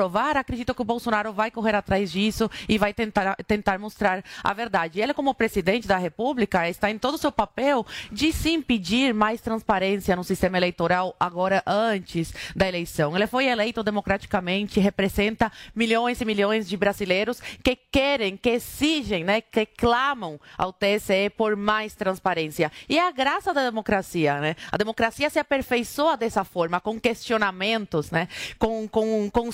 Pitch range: 195-245 Hz